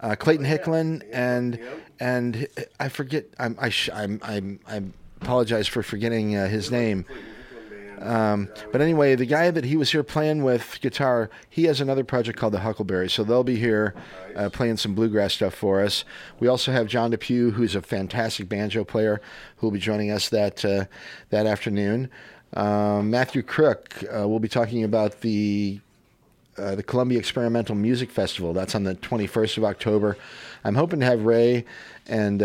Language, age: English, 40-59